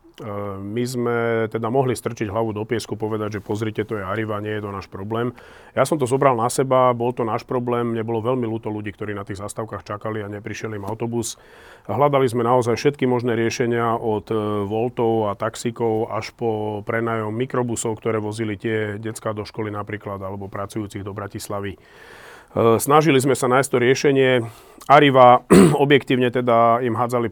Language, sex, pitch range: Slovak, male, 105-120 Hz